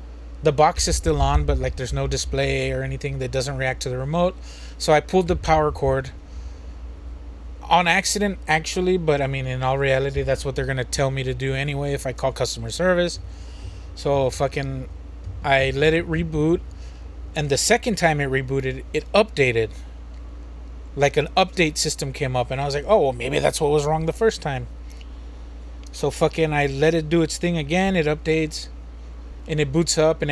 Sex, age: male, 30-49